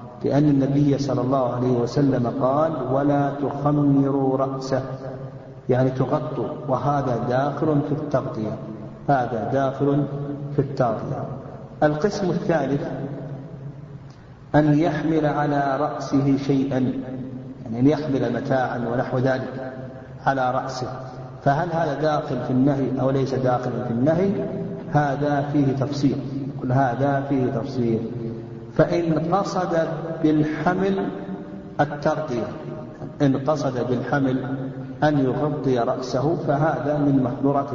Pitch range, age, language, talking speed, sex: 130-150 Hz, 50-69, Arabic, 100 wpm, male